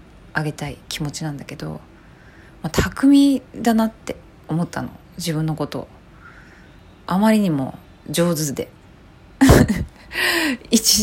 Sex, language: female, Japanese